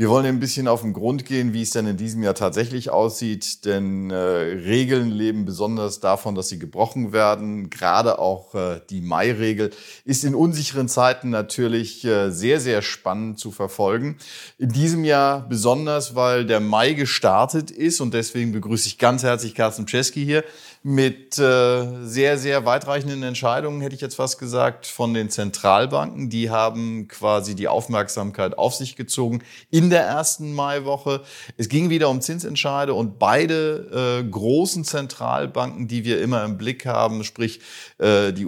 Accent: German